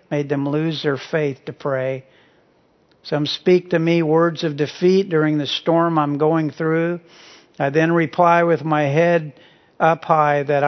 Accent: American